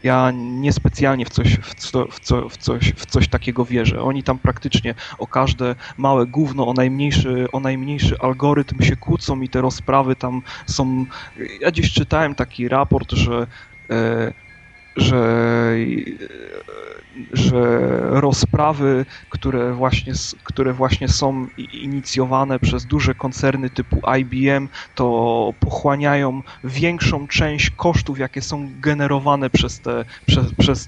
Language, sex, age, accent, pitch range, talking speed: Polish, male, 30-49, native, 120-140 Hz, 125 wpm